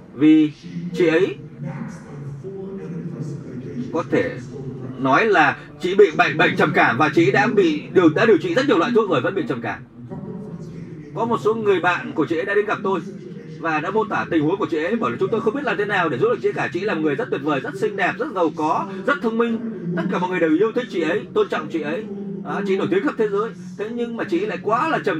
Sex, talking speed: male, 260 wpm